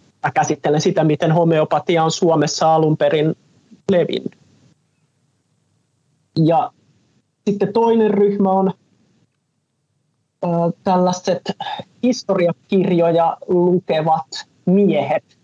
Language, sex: Finnish, male